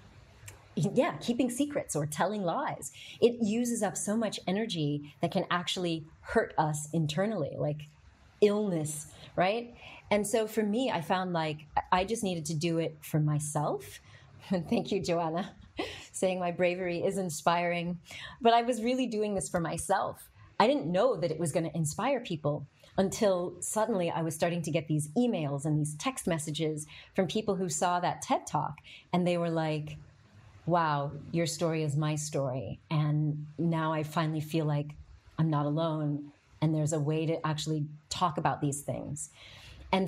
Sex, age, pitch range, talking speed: female, 30-49, 150-185 Hz, 170 wpm